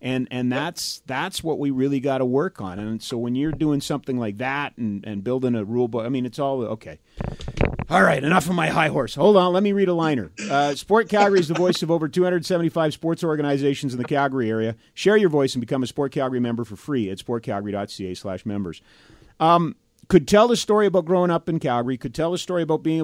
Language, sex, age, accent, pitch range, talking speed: English, male, 40-59, American, 125-165 Hz, 235 wpm